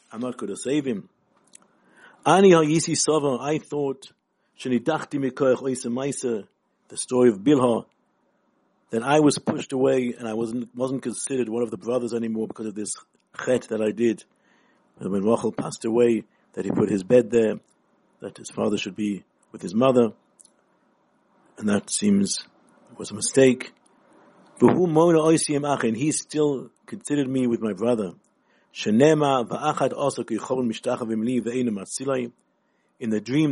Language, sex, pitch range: English, male, 115-145 Hz